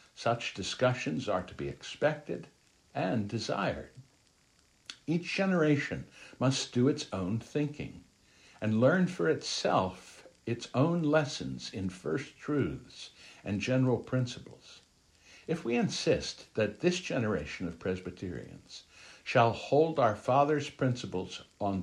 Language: English